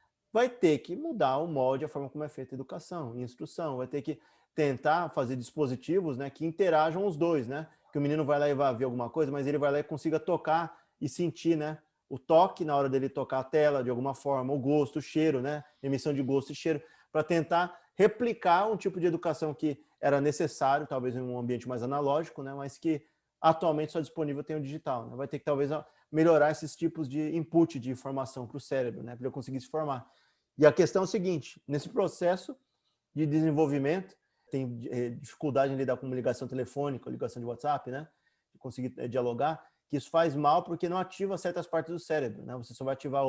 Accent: Brazilian